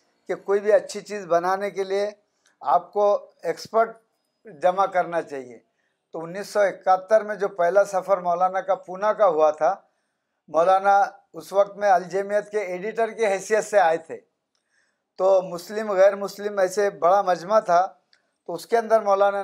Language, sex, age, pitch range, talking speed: Urdu, male, 50-69, 180-210 Hz, 165 wpm